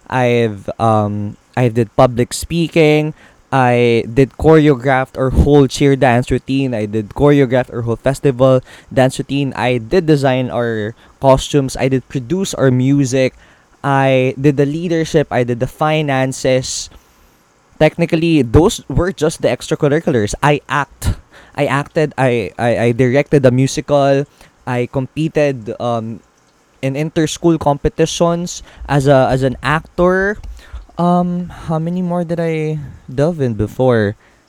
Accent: native